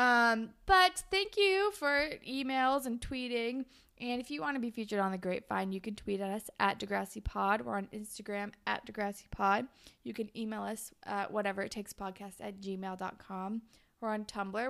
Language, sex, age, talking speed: English, female, 20-39, 190 wpm